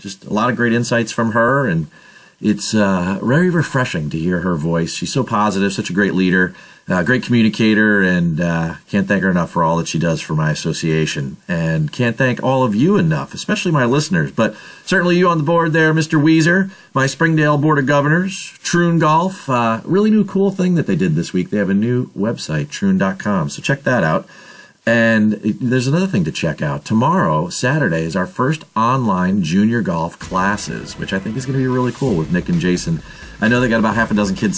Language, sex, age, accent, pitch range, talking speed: English, male, 40-59, American, 100-165 Hz, 220 wpm